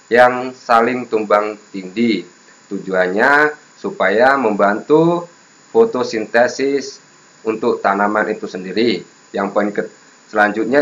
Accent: native